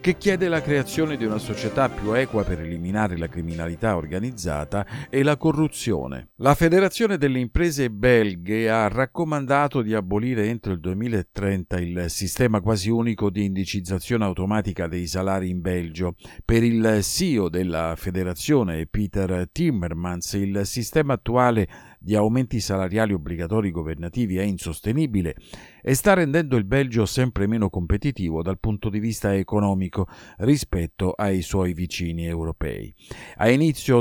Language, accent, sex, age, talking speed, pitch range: Italian, native, male, 50-69, 135 wpm, 90-125 Hz